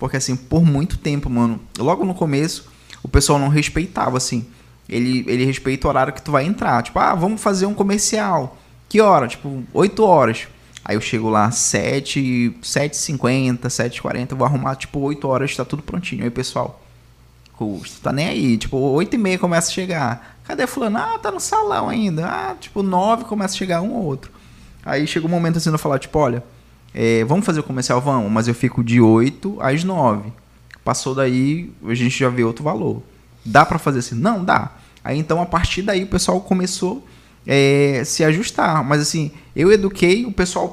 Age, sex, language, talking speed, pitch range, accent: 20-39, male, Portuguese, 200 wpm, 125-180 Hz, Brazilian